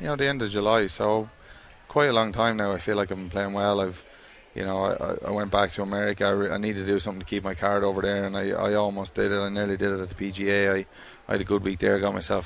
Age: 20-39